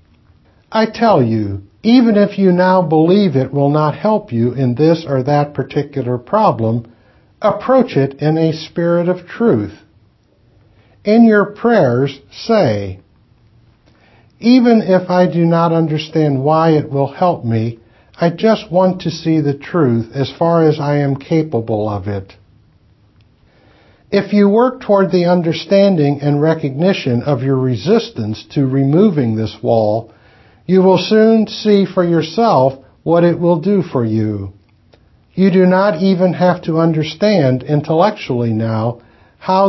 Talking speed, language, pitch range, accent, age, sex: 140 wpm, English, 115-180 Hz, American, 60-79, male